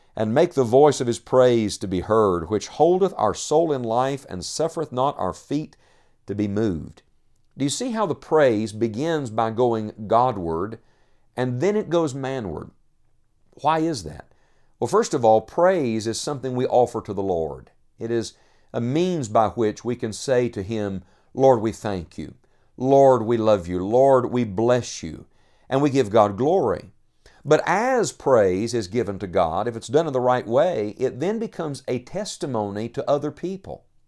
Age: 50-69